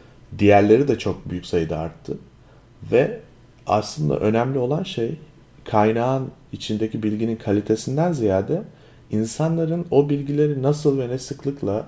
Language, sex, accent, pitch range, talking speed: Turkish, male, native, 105-130 Hz, 115 wpm